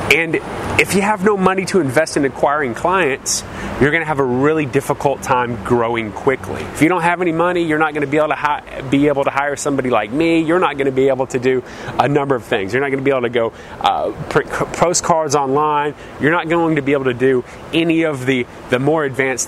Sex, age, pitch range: male, 30-49, 125-150 Hz